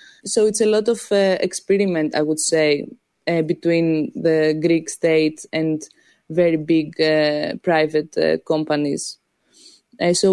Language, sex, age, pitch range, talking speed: English, female, 20-39, 160-190 Hz, 140 wpm